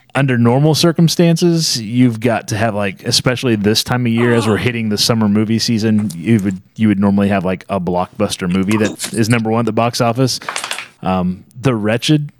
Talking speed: 200 wpm